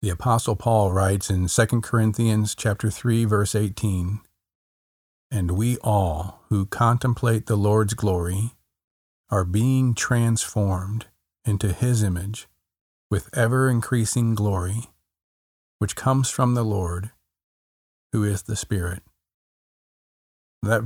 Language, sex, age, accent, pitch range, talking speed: English, male, 40-59, American, 95-115 Hz, 110 wpm